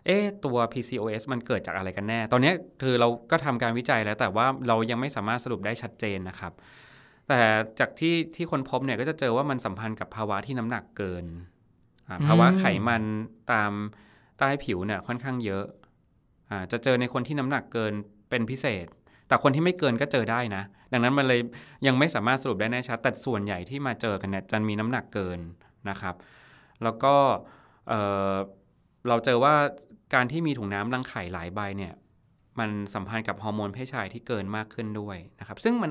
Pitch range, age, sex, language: 105-130 Hz, 20-39, male, Thai